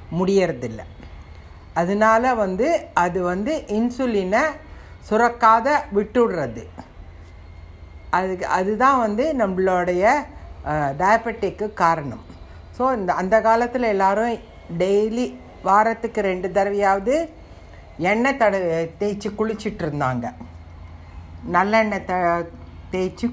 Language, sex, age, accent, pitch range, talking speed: Tamil, female, 60-79, native, 150-215 Hz, 75 wpm